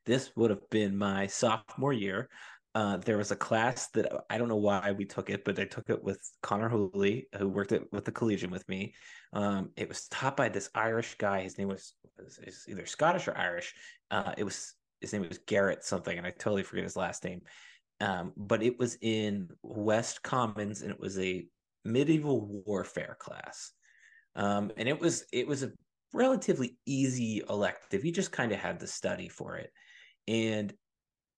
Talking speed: 190 wpm